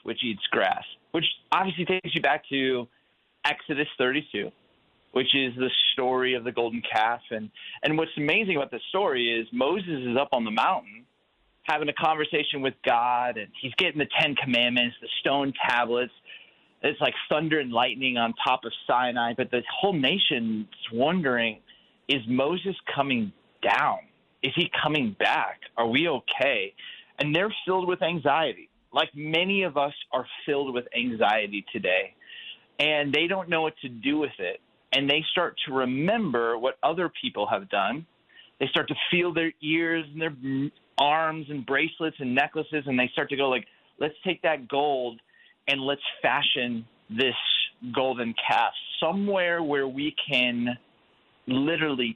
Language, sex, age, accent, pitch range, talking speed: English, male, 30-49, American, 125-165 Hz, 160 wpm